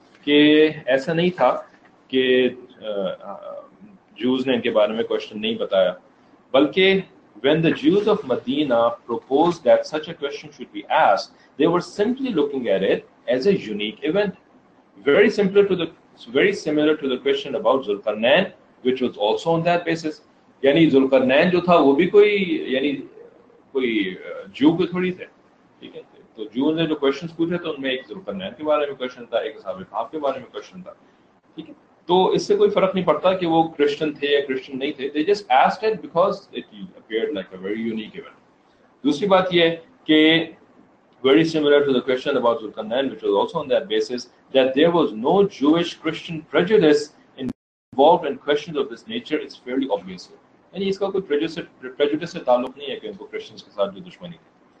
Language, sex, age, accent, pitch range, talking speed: English, male, 40-59, Indian, 140-200 Hz, 130 wpm